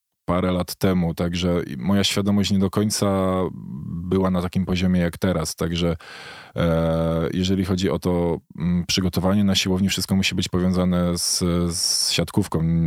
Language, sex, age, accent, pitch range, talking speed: Polish, male, 20-39, native, 85-95 Hz, 140 wpm